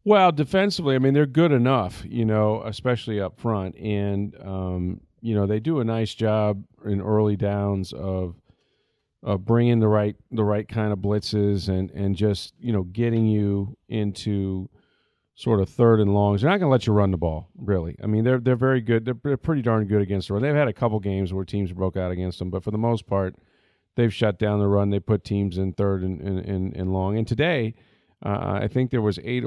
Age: 40-59